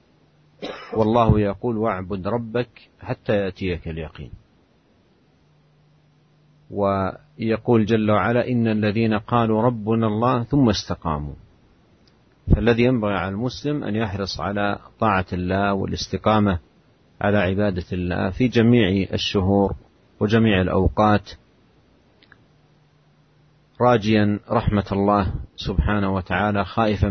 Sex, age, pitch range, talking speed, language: male, 40-59, 100-125 Hz, 90 wpm, Indonesian